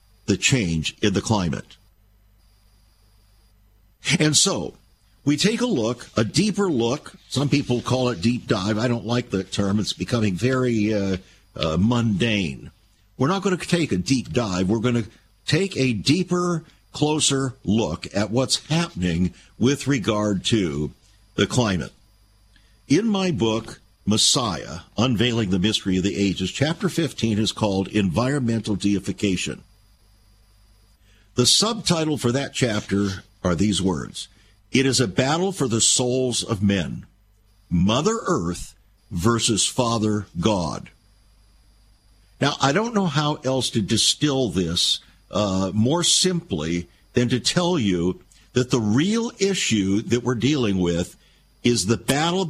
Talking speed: 135 wpm